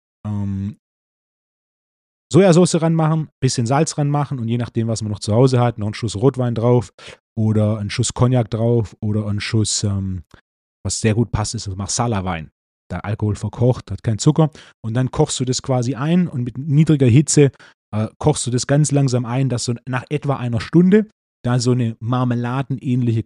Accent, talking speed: German, 180 wpm